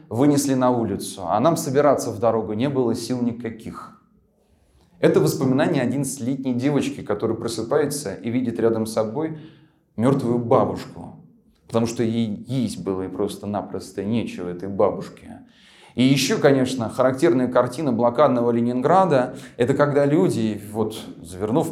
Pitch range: 110-145 Hz